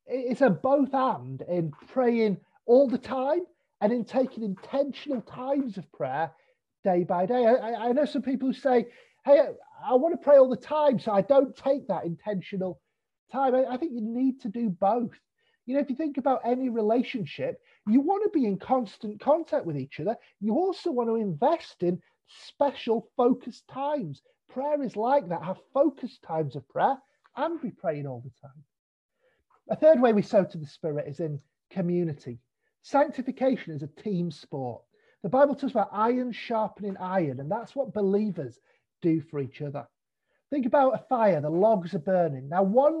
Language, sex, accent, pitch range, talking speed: English, male, British, 180-265 Hz, 185 wpm